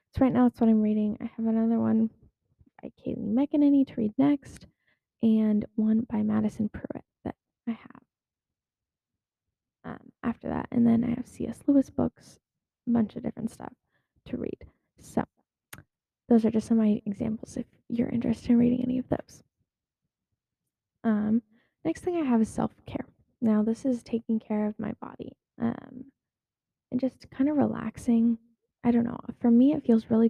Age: 10-29